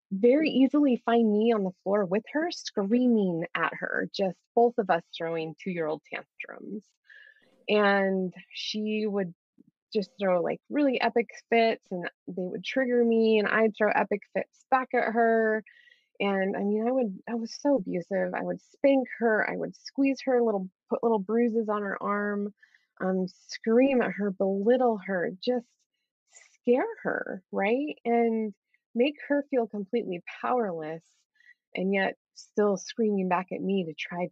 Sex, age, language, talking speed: female, 20-39, English, 155 wpm